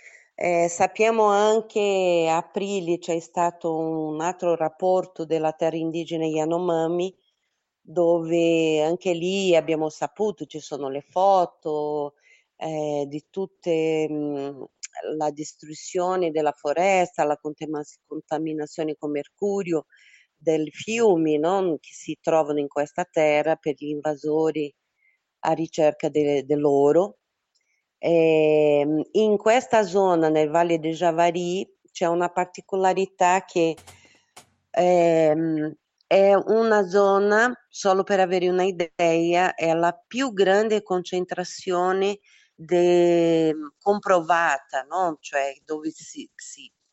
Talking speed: 105 wpm